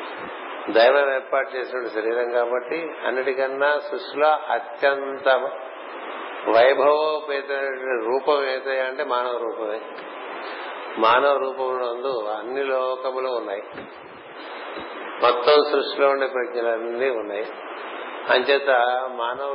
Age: 50-69